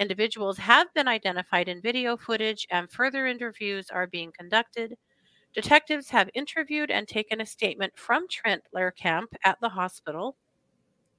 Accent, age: American, 40-59